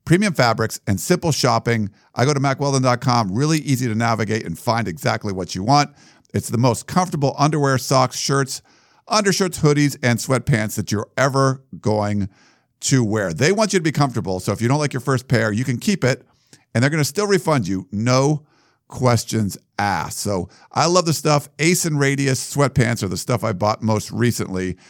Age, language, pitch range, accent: 50-69, English, 105-145 Hz, American